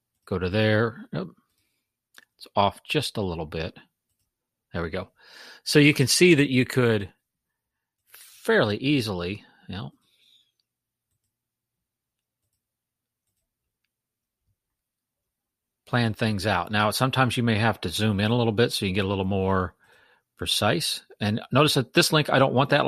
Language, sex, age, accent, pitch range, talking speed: English, male, 40-59, American, 95-120 Hz, 140 wpm